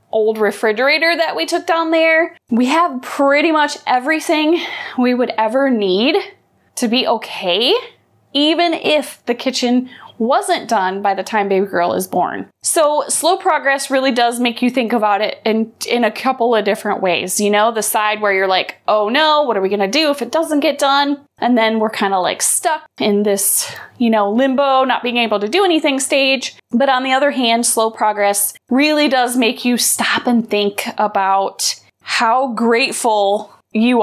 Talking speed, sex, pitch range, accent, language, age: 185 wpm, female, 220-300 Hz, American, English, 20-39